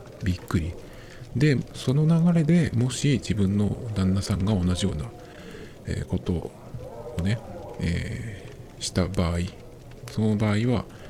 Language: Japanese